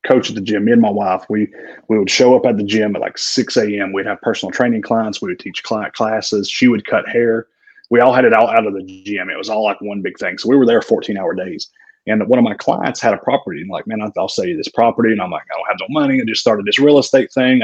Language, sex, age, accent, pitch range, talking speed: English, male, 30-49, American, 105-150 Hz, 300 wpm